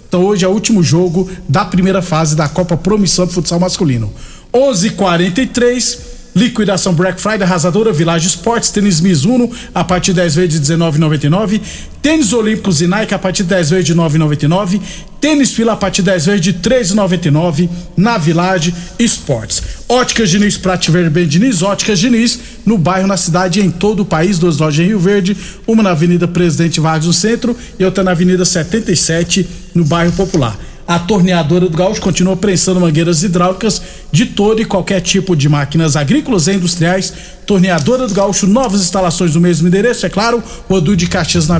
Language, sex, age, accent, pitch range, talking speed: Portuguese, male, 50-69, Brazilian, 175-205 Hz, 175 wpm